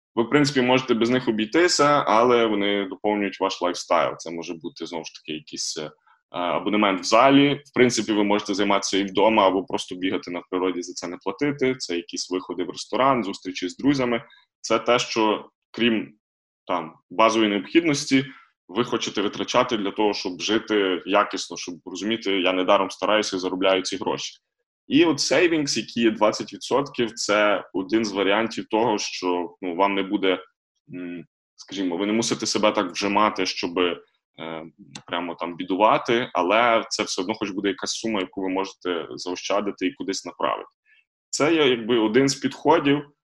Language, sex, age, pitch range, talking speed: Ukrainian, male, 20-39, 95-120 Hz, 165 wpm